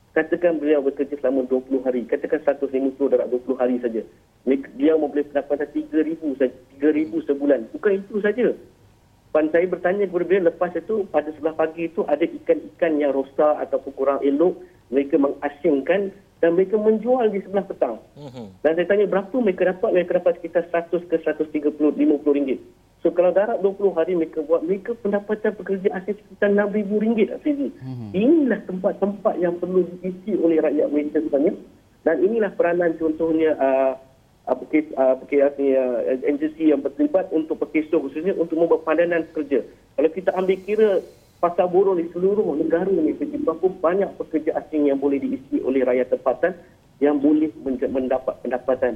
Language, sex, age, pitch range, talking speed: Malay, male, 50-69, 140-190 Hz, 165 wpm